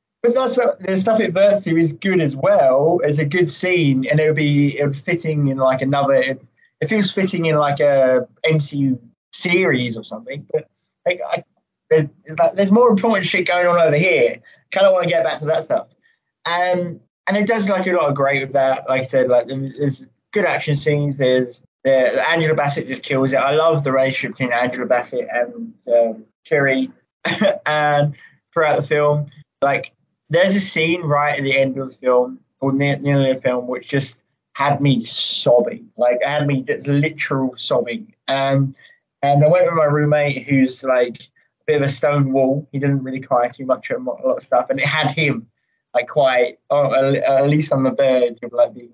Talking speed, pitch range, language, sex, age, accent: 205 wpm, 130-170 Hz, English, male, 20-39, British